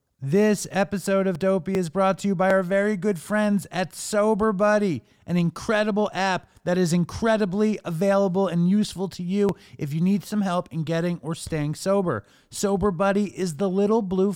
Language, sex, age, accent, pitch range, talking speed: English, male, 30-49, American, 170-200 Hz, 180 wpm